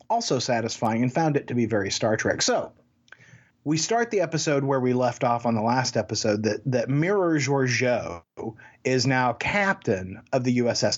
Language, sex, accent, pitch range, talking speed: English, male, American, 115-150 Hz, 180 wpm